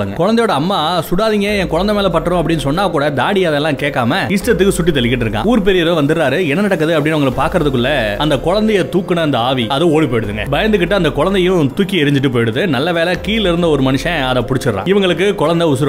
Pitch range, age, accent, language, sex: 140-190 Hz, 30-49, native, Tamil, male